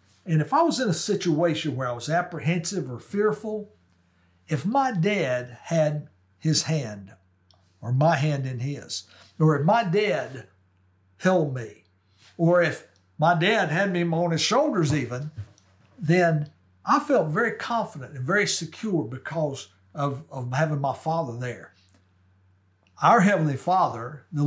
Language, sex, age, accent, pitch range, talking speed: English, male, 60-79, American, 115-180 Hz, 145 wpm